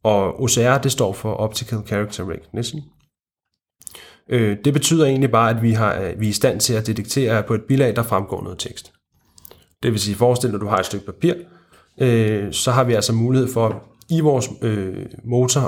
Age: 30-49